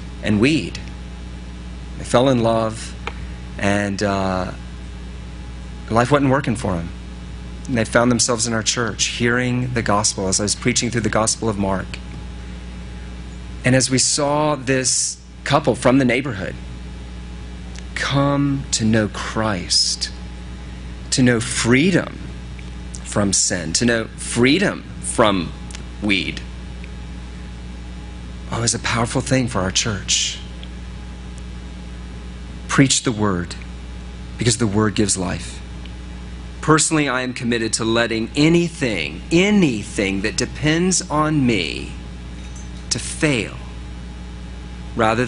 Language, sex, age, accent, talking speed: English, male, 30-49, American, 115 wpm